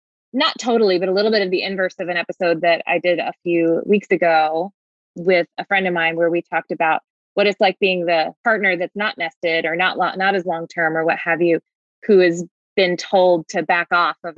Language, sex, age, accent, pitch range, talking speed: English, female, 20-39, American, 165-190 Hz, 230 wpm